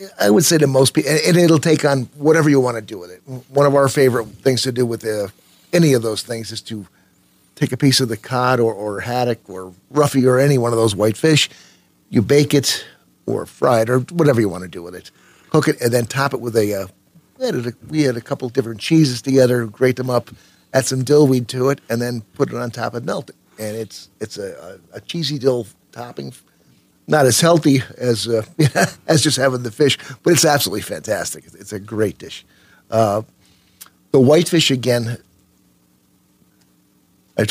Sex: male